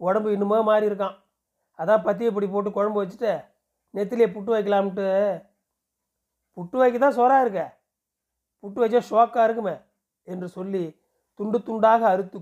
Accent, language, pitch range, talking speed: native, Tamil, 180-220 Hz, 125 wpm